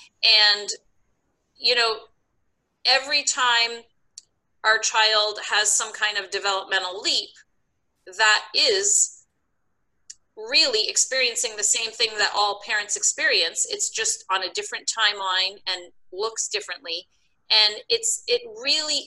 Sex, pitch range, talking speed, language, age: female, 190-275 Hz, 115 wpm, English, 30-49